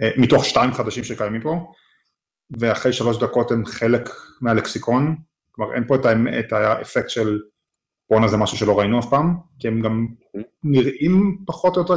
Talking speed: 165 wpm